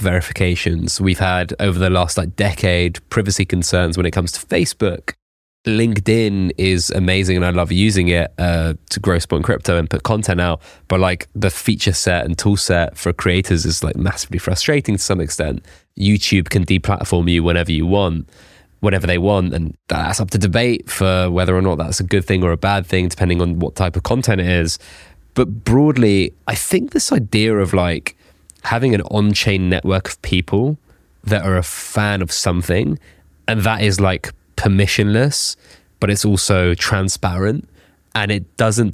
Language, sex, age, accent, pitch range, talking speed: English, male, 20-39, British, 85-105 Hz, 180 wpm